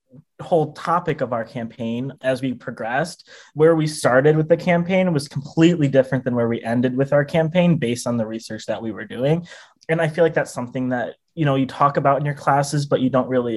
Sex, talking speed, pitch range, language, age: male, 225 wpm, 125-165 Hz, English, 20-39